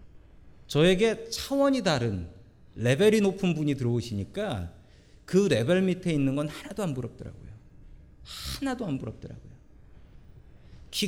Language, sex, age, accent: Korean, male, 40-59, native